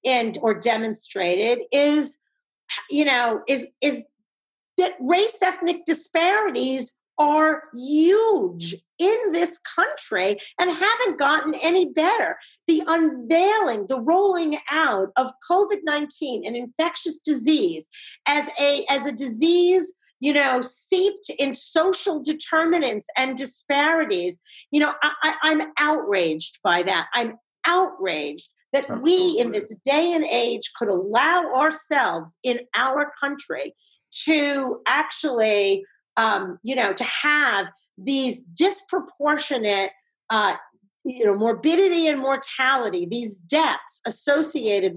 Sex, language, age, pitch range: female, English, 40-59, 230-330 Hz